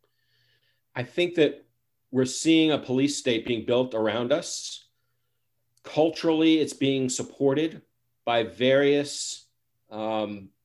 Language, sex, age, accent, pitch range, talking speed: English, male, 40-59, American, 115-130 Hz, 105 wpm